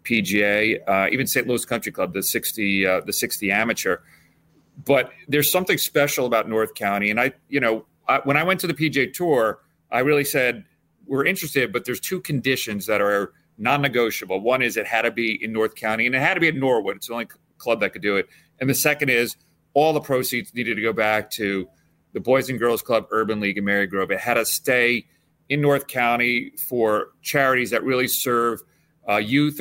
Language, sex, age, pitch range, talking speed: English, male, 40-59, 110-140 Hz, 215 wpm